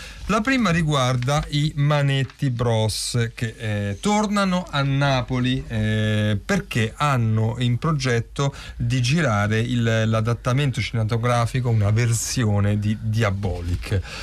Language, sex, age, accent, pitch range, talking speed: Italian, male, 40-59, native, 115-150 Hz, 100 wpm